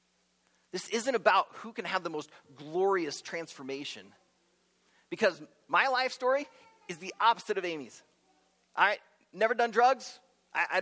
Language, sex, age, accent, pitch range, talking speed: English, male, 30-49, American, 175-250 Hz, 135 wpm